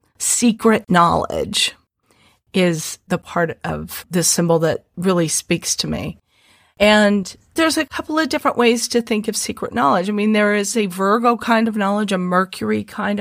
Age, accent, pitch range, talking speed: 40-59, American, 175-220 Hz, 170 wpm